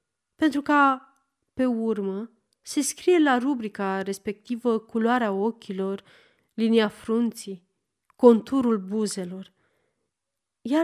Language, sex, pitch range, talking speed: Romanian, female, 205-265 Hz, 90 wpm